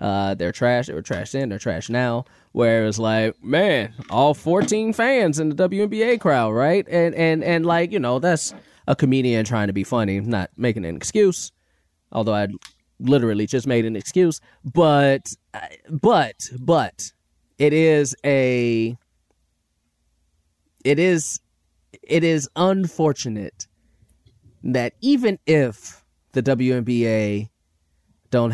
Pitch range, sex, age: 105-145 Hz, male, 20-39